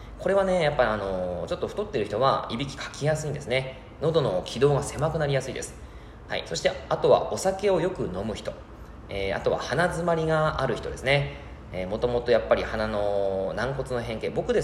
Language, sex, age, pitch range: Japanese, male, 20-39, 110-180 Hz